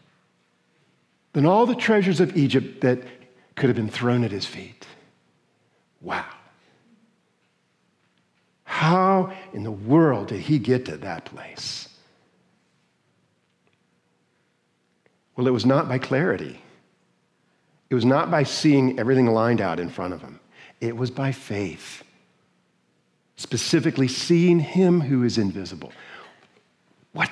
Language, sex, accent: English, male, American